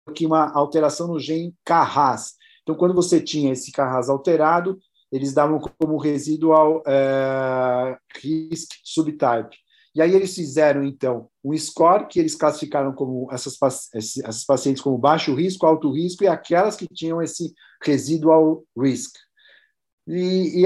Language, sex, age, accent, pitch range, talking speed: Portuguese, male, 50-69, Brazilian, 130-160 Hz, 140 wpm